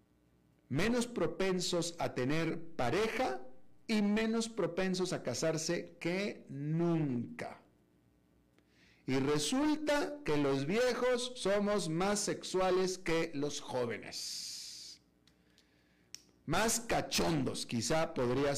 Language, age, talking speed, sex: Spanish, 40-59, 85 wpm, male